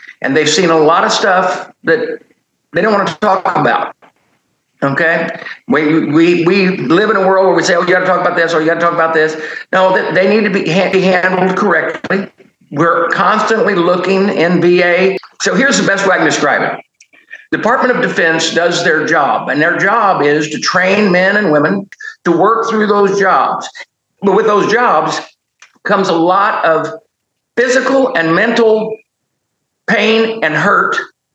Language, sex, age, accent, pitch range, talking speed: English, male, 60-79, American, 160-195 Hz, 180 wpm